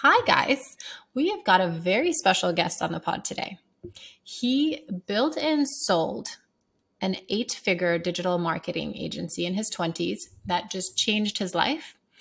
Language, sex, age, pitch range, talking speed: English, female, 20-39, 175-220 Hz, 145 wpm